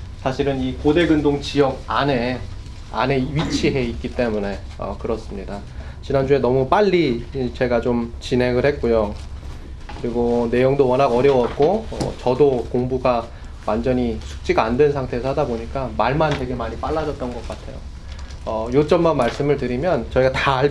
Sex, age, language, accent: male, 20-39, Korean, native